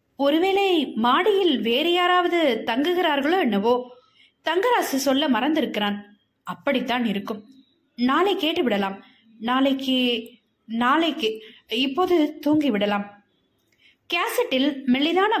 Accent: native